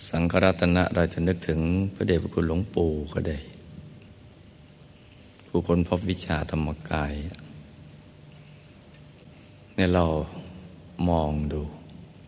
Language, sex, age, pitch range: Thai, male, 60-79, 80-90 Hz